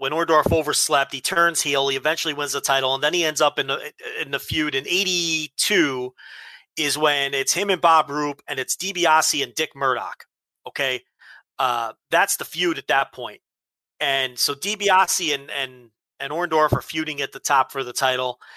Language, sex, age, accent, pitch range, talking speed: English, male, 30-49, American, 145-205 Hz, 195 wpm